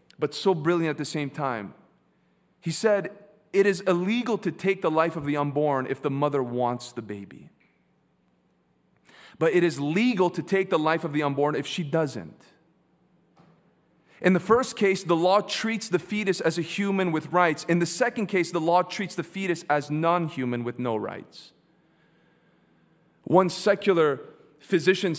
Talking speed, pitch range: 165 wpm, 160-205 Hz